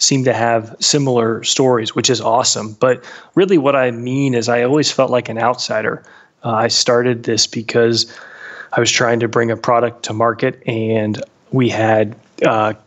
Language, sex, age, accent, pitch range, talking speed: English, male, 30-49, American, 115-130 Hz, 175 wpm